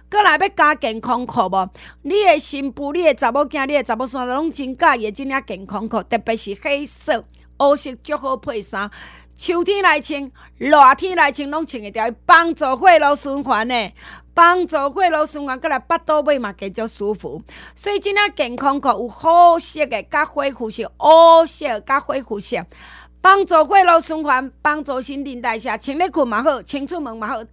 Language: Chinese